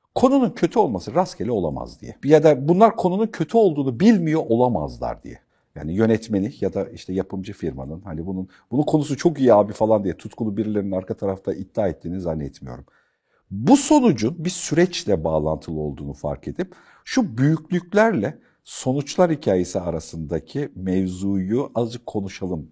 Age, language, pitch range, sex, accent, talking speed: 50-69, Turkish, 90-145 Hz, male, native, 145 wpm